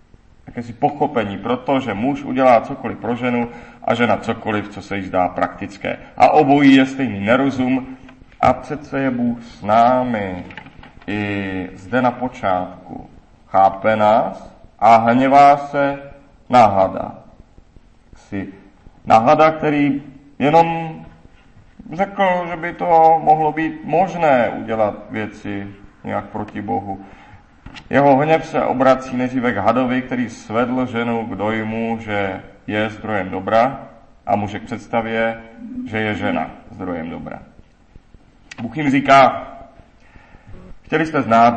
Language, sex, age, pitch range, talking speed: Czech, male, 40-59, 105-140 Hz, 120 wpm